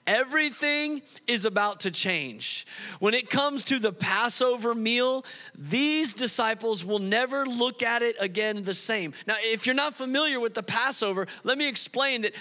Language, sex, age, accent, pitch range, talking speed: English, male, 40-59, American, 215-265 Hz, 165 wpm